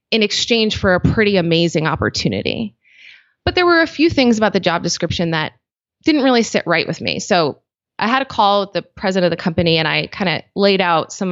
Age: 20-39